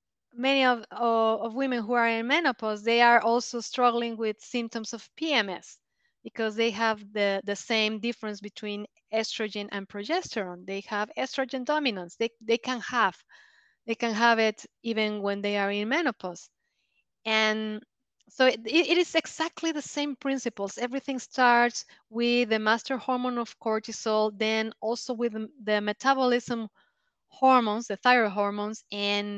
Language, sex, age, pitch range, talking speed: English, female, 20-39, 210-250 Hz, 145 wpm